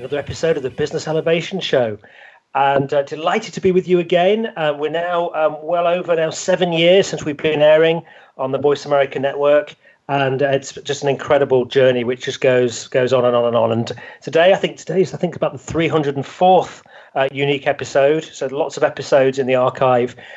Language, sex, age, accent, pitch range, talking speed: English, male, 40-59, British, 130-160 Hz, 205 wpm